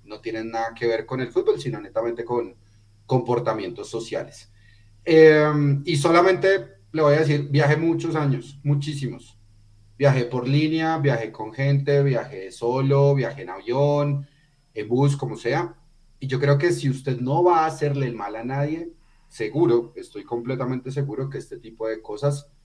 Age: 30-49